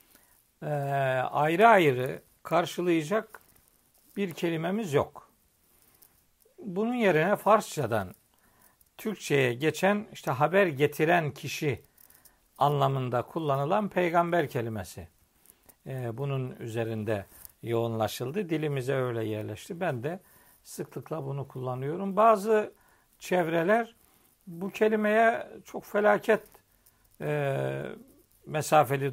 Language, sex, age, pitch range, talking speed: Turkish, male, 60-79, 130-210 Hz, 80 wpm